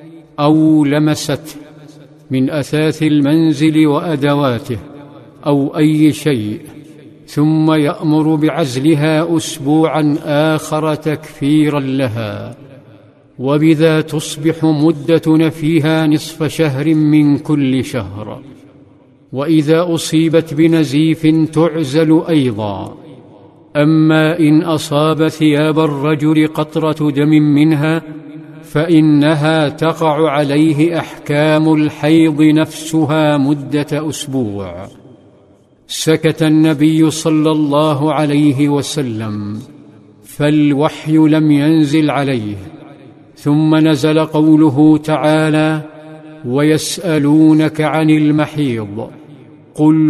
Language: Arabic